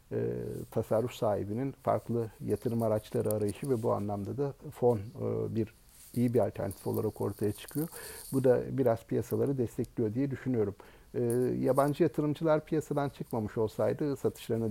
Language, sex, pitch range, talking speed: Turkish, male, 110-130 Hz, 140 wpm